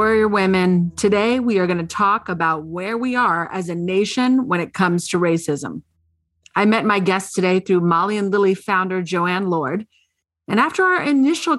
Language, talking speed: English, 185 wpm